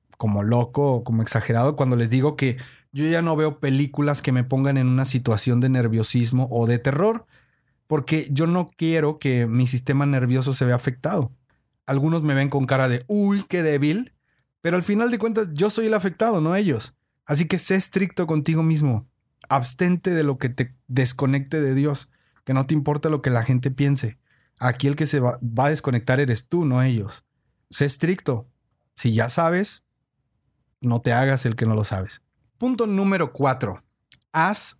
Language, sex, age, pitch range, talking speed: Spanish, male, 30-49, 125-155 Hz, 185 wpm